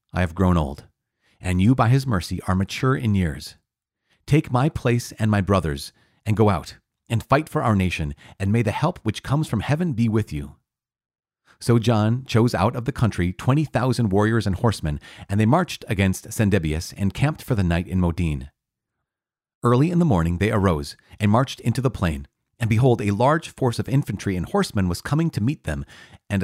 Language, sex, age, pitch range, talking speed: English, male, 40-59, 95-125 Hz, 195 wpm